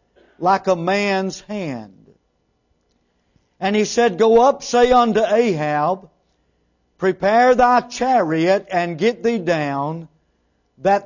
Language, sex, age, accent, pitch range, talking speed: English, male, 50-69, American, 150-220 Hz, 110 wpm